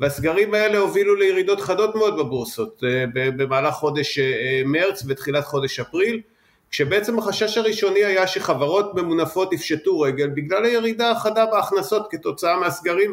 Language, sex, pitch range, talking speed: Hebrew, male, 145-215 Hz, 125 wpm